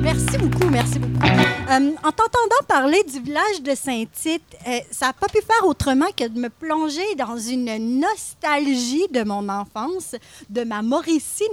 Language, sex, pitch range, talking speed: French, female, 230-330 Hz, 165 wpm